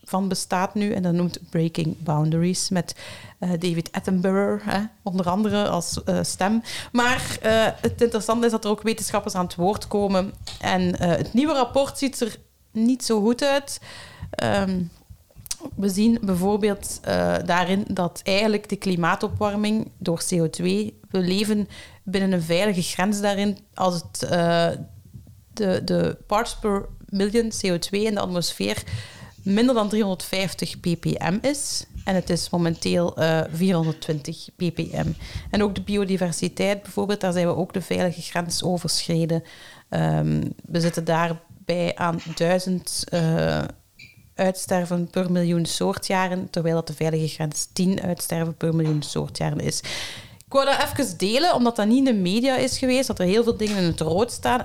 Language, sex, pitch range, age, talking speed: Dutch, female, 170-210 Hz, 30-49, 155 wpm